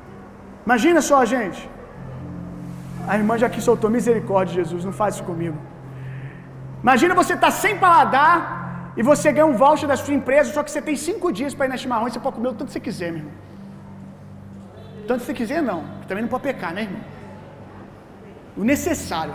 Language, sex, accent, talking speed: Gujarati, male, Brazilian, 200 wpm